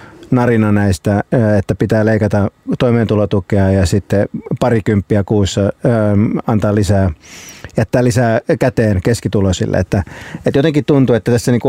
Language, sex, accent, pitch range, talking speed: Finnish, male, native, 105-130 Hz, 120 wpm